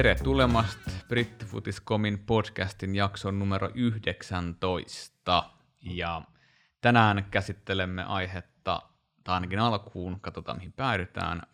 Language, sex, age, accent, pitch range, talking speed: Finnish, male, 20-39, native, 90-110 Hz, 80 wpm